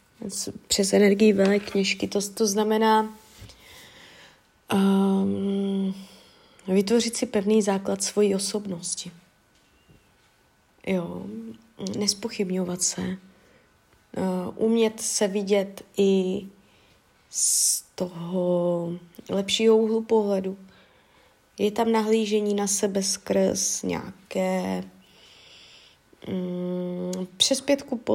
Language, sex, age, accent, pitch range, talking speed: Czech, female, 20-39, native, 190-220 Hz, 70 wpm